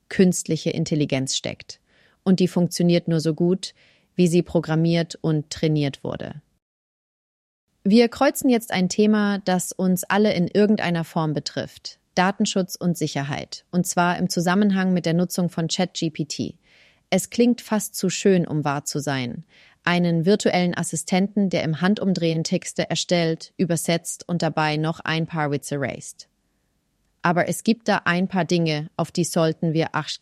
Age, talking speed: 30-49, 150 wpm